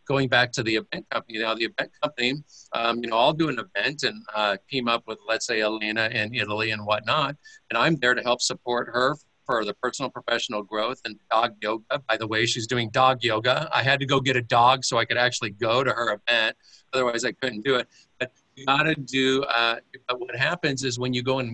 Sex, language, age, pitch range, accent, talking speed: male, English, 50-69, 110-130 Hz, American, 230 wpm